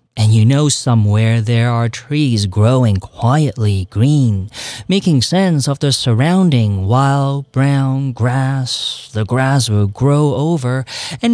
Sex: male